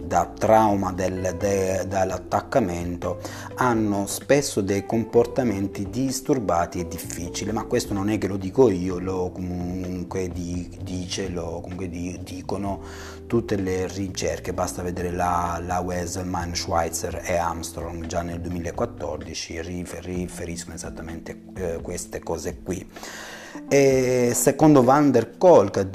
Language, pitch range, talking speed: Italian, 90-120 Hz, 120 wpm